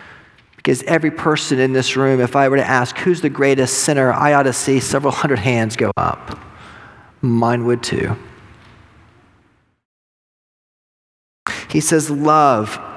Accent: American